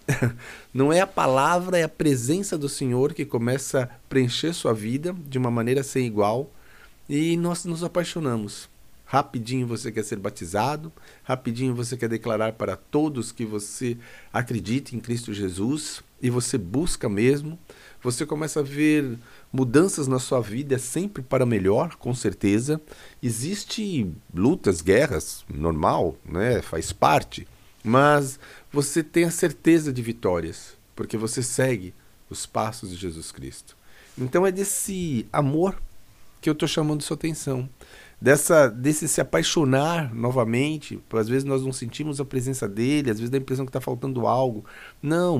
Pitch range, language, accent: 115-155 Hz, Portuguese, Brazilian